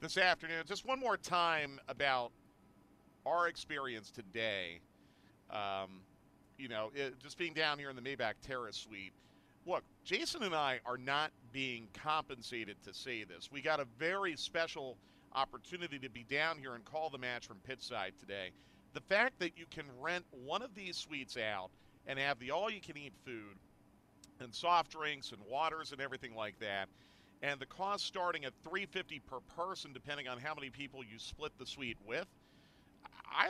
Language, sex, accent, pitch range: English, male, American, 120-165 Hz